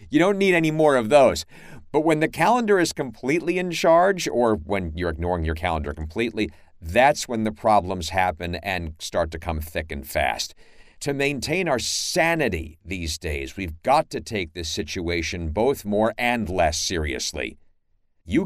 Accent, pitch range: American, 85-135 Hz